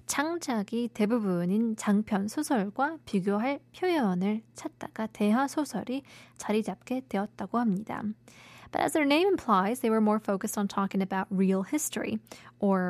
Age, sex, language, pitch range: 20-39, female, Korean, 200-275 Hz